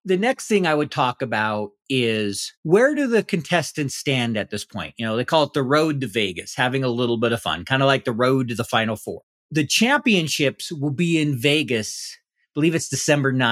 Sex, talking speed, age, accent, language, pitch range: male, 220 wpm, 40-59, American, English, 125-175 Hz